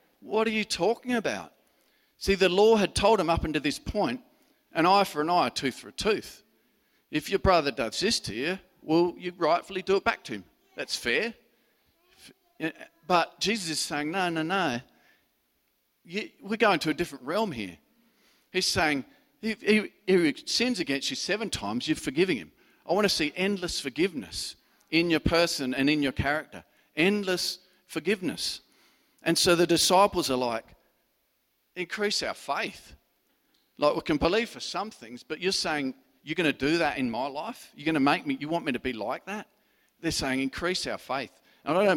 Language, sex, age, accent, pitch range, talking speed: English, male, 50-69, Australian, 140-215 Hz, 185 wpm